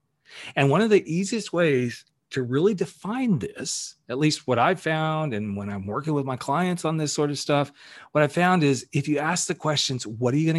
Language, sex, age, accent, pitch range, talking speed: English, male, 40-59, American, 115-150 Hz, 225 wpm